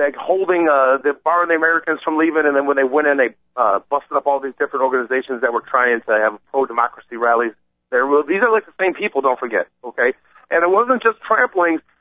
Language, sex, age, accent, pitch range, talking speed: English, male, 50-69, American, 135-195 Hz, 235 wpm